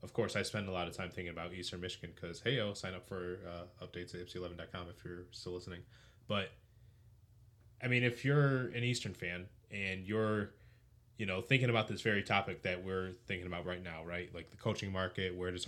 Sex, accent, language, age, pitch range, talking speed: male, American, English, 20-39, 95-120 Hz, 215 wpm